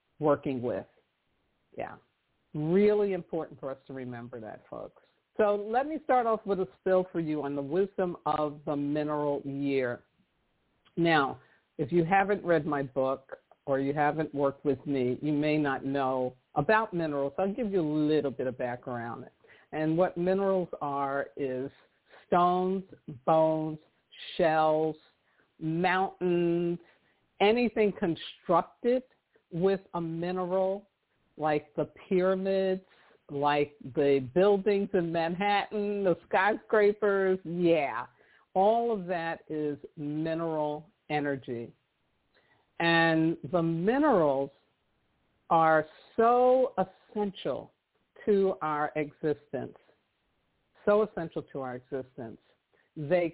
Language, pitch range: English, 145-190 Hz